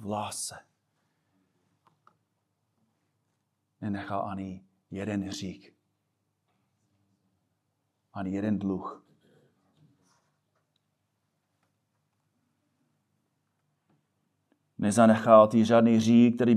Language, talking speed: Czech, 45 wpm